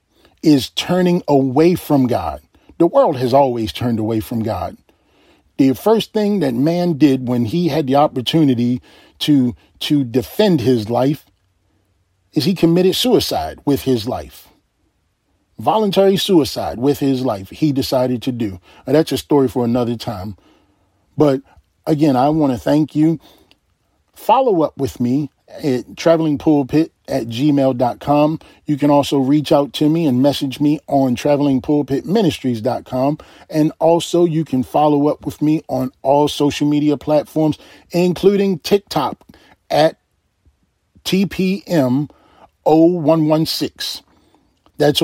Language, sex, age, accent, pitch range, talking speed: English, male, 40-59, American, 130-160 Hz, 130 wpm